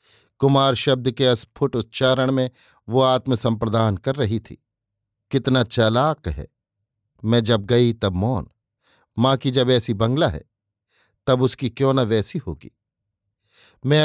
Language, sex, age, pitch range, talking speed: Hindi, male, 50-69, 110-145 Hz, 135 wpm